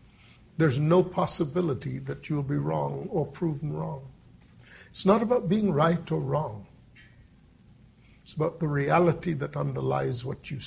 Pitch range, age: 130-165 Hz, 50-69